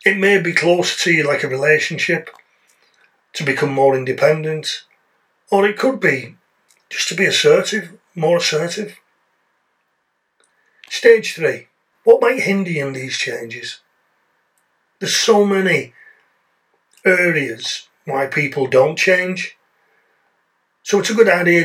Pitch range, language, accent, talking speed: 145-220 Hz, English, British, 120 wpm